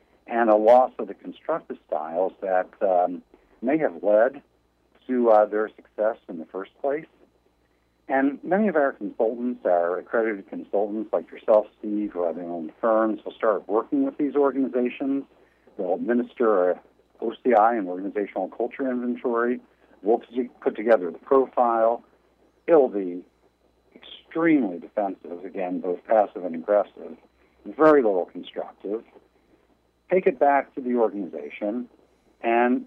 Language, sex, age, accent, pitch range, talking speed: English, male, 60-79, American, 90-135 Hz, 135 wpm